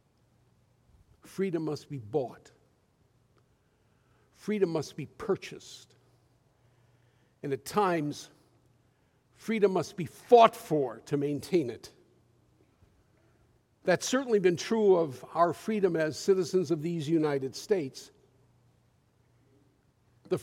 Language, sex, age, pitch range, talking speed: English, male, 50-69, 125-195 Hz, 95 wpm